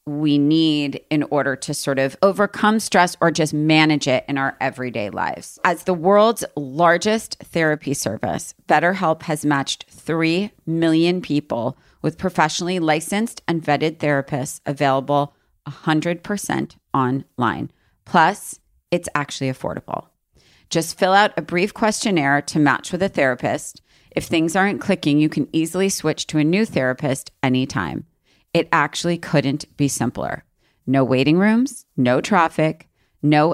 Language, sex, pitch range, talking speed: English, female, 140-175 Hz, 140 wpm